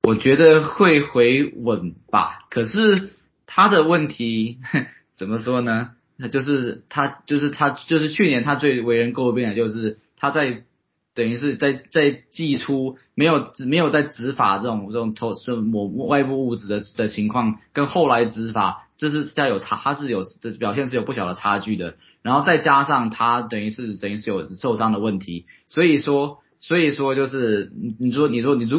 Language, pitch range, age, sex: Chinese, 110-145 Hz, 20-39, male